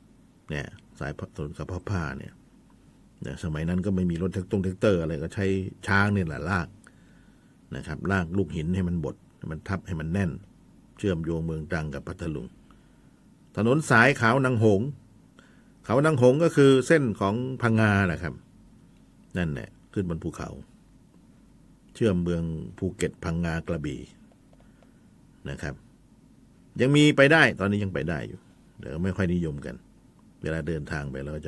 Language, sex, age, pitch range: Thai, male, 60-79, 85-120 Hz